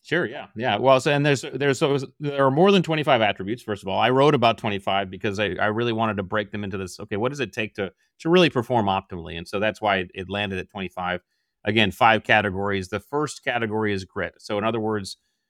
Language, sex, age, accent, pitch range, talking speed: English, male, 30-49, American, 95-115 Hz, 245 wpm